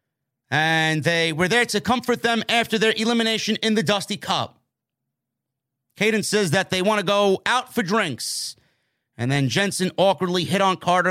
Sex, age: male, 30-49